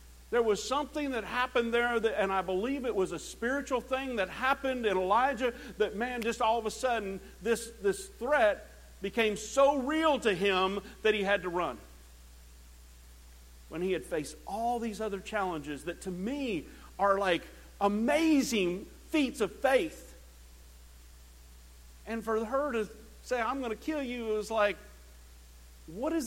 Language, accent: English, American